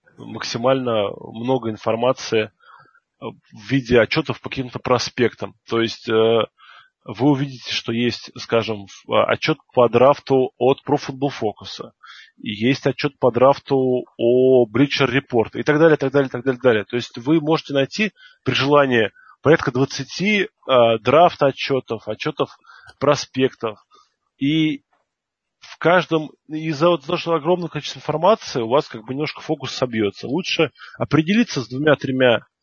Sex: male